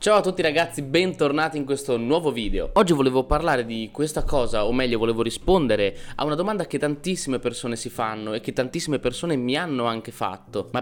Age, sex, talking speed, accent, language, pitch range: 20-39, male, 200 wpm, native, Italian, 120-160 Hz